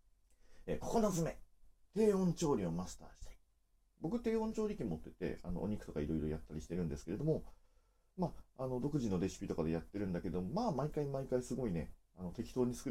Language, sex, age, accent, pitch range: Japanese, male, 40-59, native, 85-135 Hz